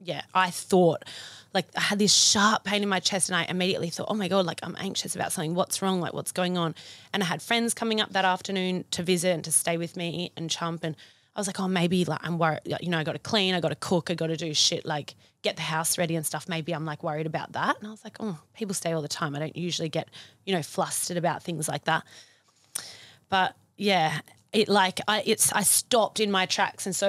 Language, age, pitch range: English, 20-39, 160-195 Hz